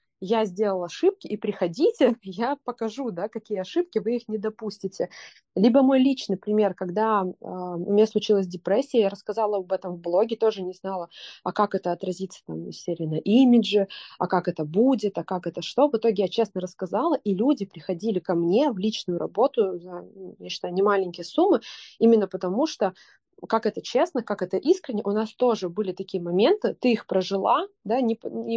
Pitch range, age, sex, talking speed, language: 185-230 Hz, 20-39, female, 185 wpm, Russian